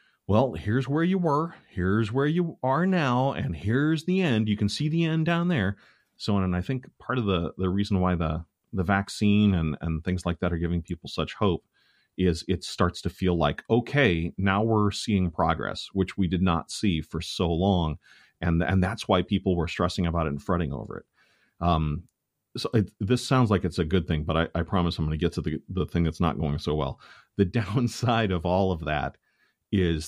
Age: 30-49